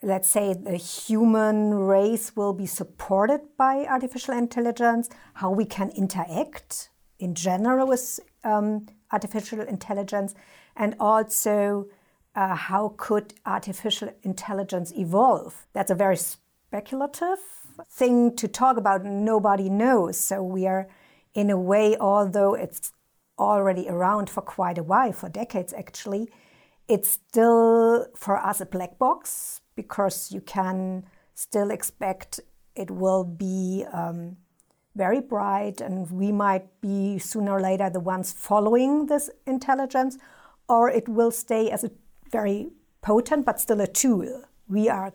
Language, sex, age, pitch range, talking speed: English, female, 50-69, 190-230 Hz, 135 wpm